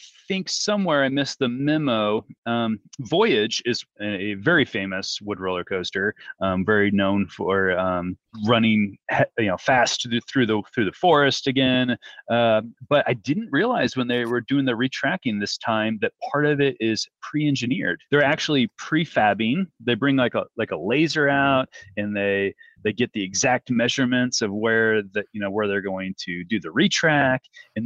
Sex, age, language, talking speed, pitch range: male, 30-49, English, 170 wpm, 105-135 Hz